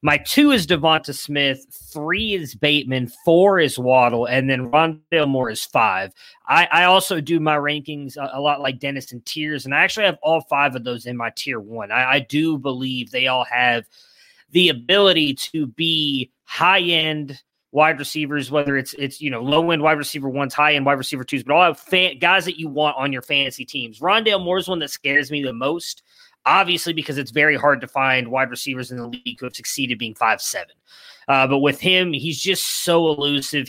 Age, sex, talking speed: 20-39, male, 205 wpm